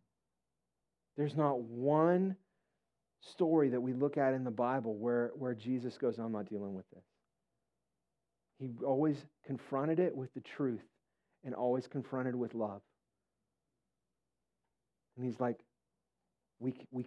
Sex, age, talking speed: male, 40-59, 130 wpm